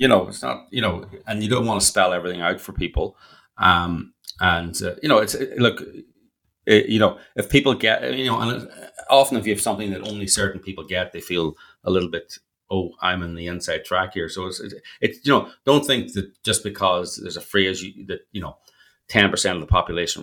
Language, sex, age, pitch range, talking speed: English, male, 30-49, 90-105 Hz, 230 wpm